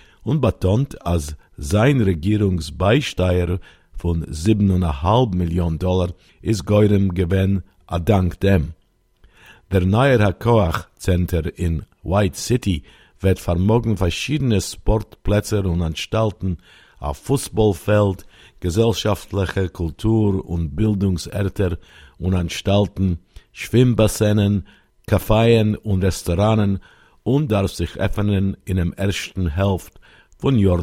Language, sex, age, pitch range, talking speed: English, male, 50-69, 85-105 Hz, 95 wpm